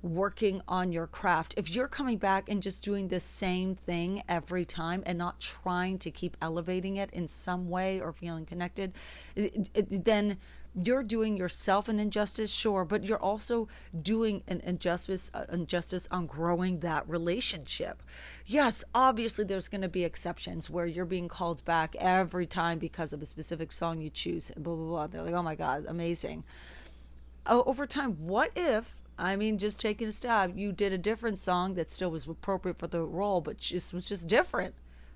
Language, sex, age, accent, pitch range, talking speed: English, female, 30-49, American, 170-210 Hz, 185 wpm